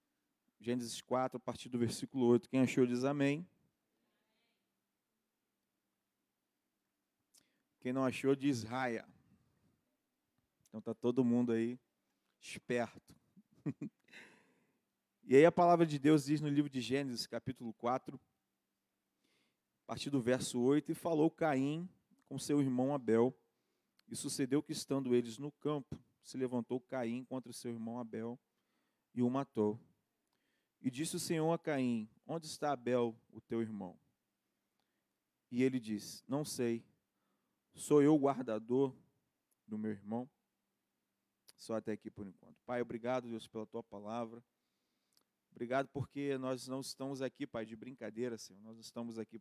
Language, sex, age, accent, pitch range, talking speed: Portuguese, male, 40-59, Brazilian, 115-145 Hz, 135 wpm